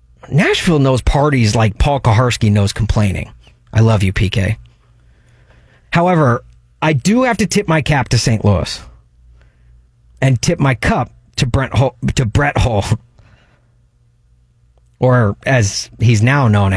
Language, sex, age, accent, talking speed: English, male, 40-59, American, 135 wpm